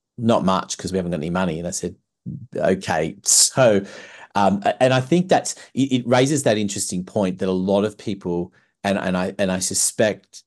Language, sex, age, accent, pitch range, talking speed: English, male, 30-49, Australian, 90-100 Hz, 195 wpm